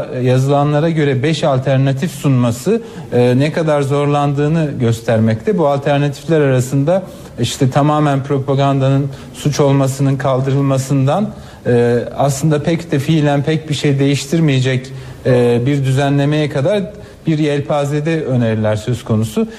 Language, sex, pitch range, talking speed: Turkish, male, 130-150 Hz, 105 wpm